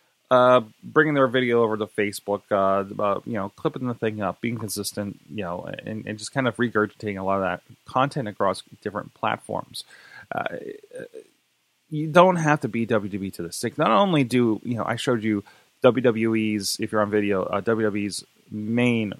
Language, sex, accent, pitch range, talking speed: English, male, American, 105-130 Hz, 185 wpm